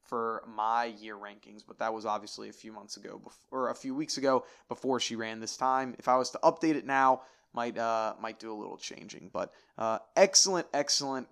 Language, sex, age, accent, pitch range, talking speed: English, male, 20-39, American, 115-150 Hz, 215 wpm